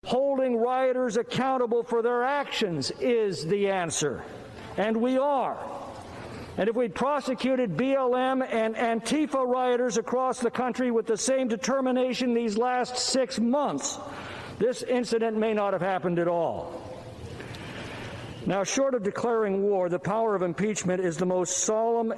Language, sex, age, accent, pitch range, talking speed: English, male, 60-79, American, 195-250 Hz, 140 wpm